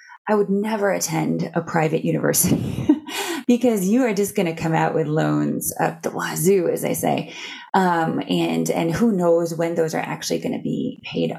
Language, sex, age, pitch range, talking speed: English, female, 20-39, 160-210 Hz, 190 wpm